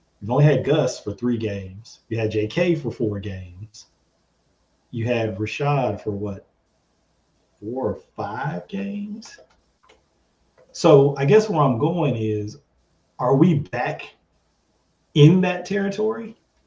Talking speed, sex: 125 wpm, male